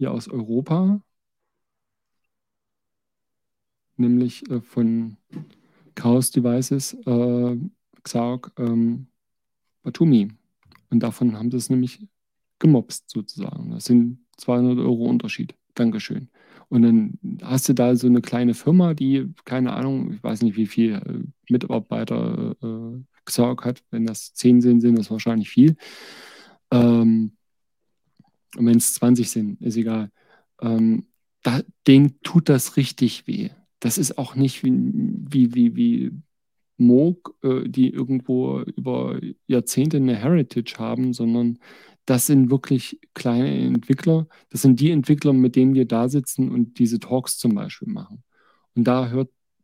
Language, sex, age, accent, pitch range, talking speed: German, male, 40-59, German, 120-155 Hz, 135 wpm